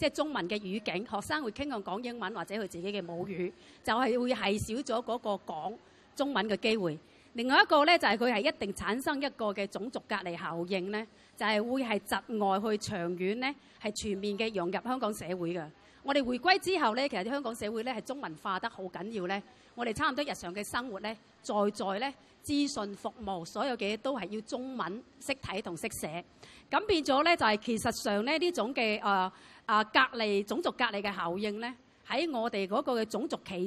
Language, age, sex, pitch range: Chinese, 30-49, female, 200-260 Hz